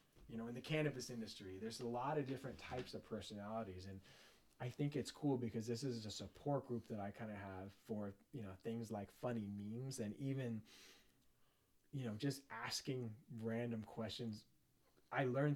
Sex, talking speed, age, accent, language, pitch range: male, 180 wpm, 20-39, American, English, 100-120 Hz